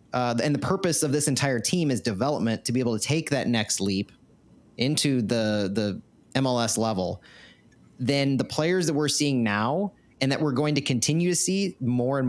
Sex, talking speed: male, 195 wpm